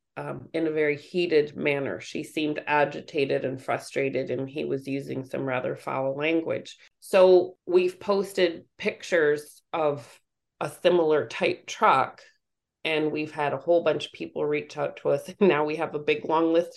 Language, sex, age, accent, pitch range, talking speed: English, female, 30-49, American, 145-180 Hz, 170 wpm